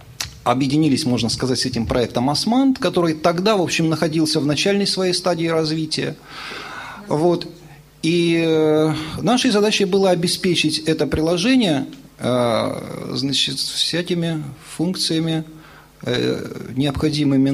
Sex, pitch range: male, 135-165 Hz